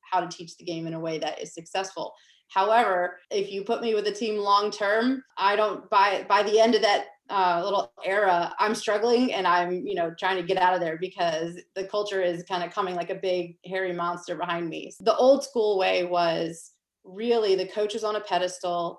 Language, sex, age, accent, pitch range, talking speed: English, female, 30-49, American, 185-230 Hz, 220 wpm